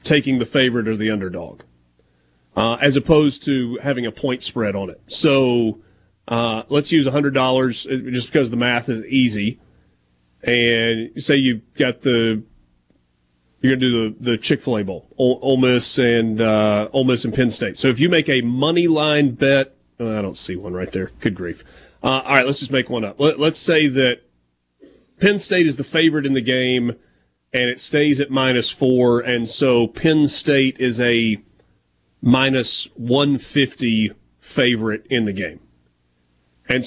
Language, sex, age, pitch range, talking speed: English, male, 30-49, 105-140 Hz, 170 wpm